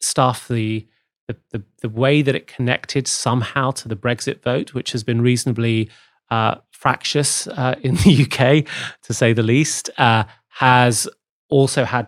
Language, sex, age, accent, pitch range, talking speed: English, male, 30-49, British, 115-135 Hz, 155 wpm